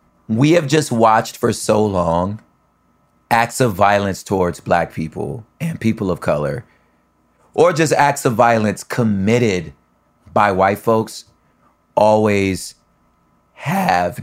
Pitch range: 85-110 Hz